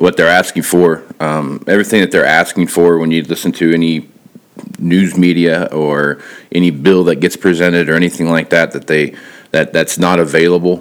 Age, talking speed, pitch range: 40-59, 185 wpm, 75-85 Hz